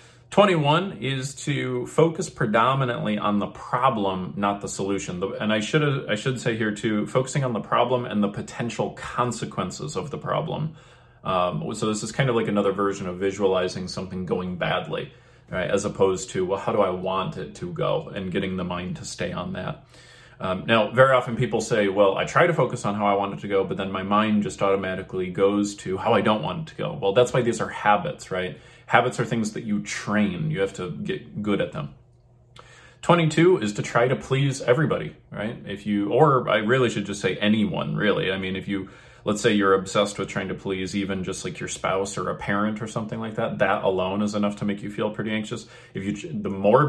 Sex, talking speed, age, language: male, 220 wpm, 30-49, English